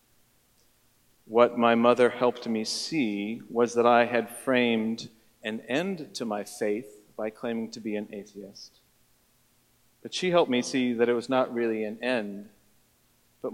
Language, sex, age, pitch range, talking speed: English, male, 40-59, 110-130 Hz, 155 wpm